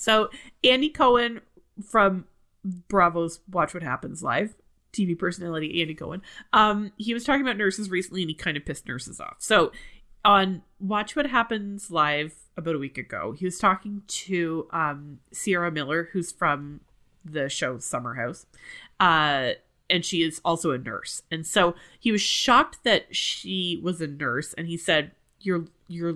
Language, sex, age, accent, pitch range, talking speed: English, female, 30-49, American, 160-200 Hz, 165 wpm